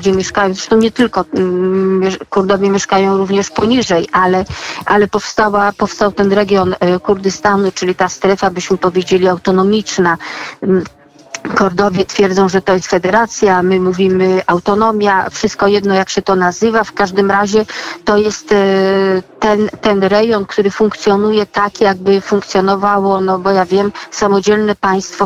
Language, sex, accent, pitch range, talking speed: Polish, female, native, 185-205 Hz, 135 wpm